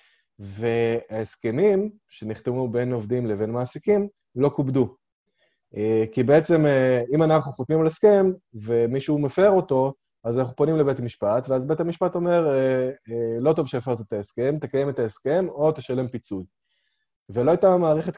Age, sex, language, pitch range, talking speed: 20-39, male, Hebrew, 115-155 Hz, 135 wpm